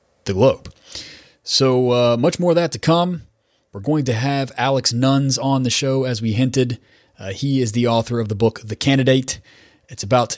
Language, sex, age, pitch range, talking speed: English, male, 30-49, 100-125 Hz, 195 wpm